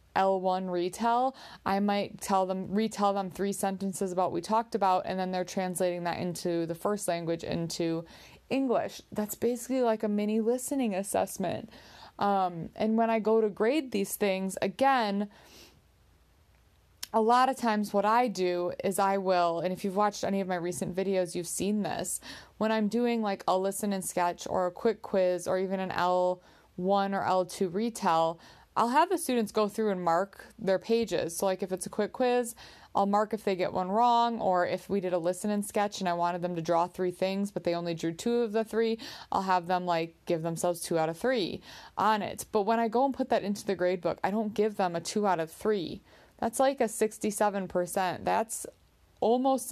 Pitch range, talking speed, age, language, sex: 180-220 Hz, 205 wpm, 20-39, English, female